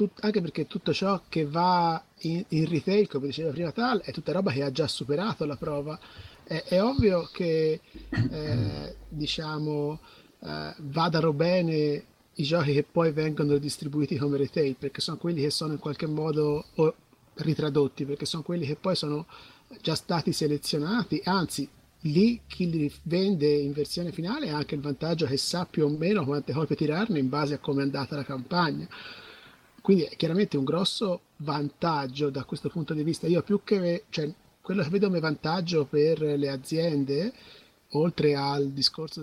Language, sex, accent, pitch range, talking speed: Italian, male, native, 145-175 Hz, 170 wpm